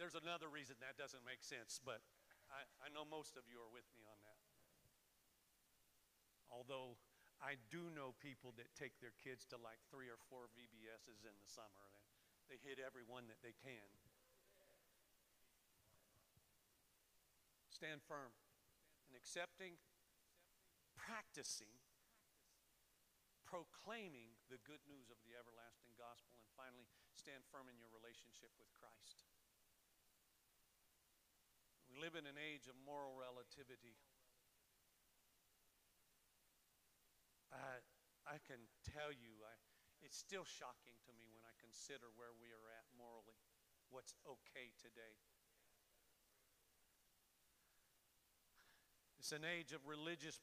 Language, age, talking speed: English, 50-69, 120 wpm